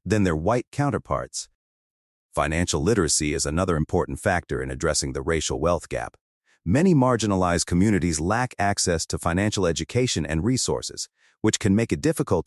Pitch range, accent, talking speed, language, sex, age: 80-110 Hz, American, 150 wpm, English, male, 40-59